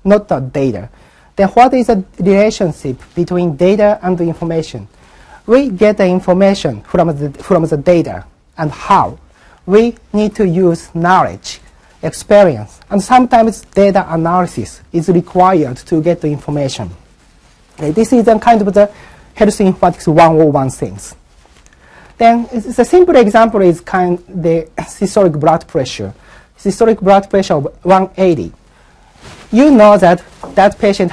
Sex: male